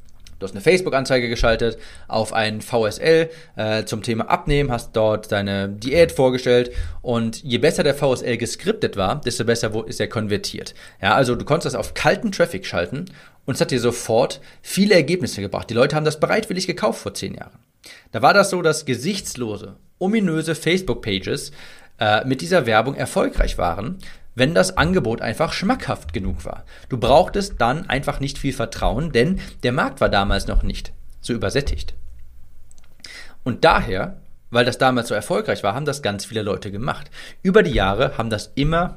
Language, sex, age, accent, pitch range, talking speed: German, male, 40-59, German, 105-150 Hz, 170 wpm